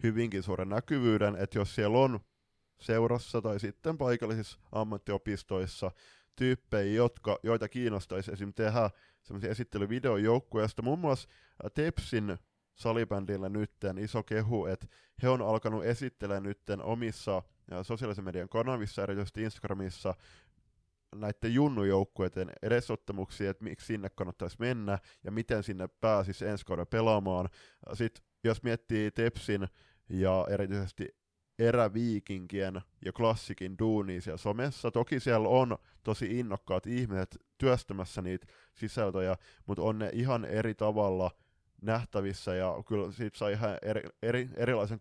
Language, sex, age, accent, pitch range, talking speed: Finnish, male, 20-39, native, 95-115 Hz, 120 wpm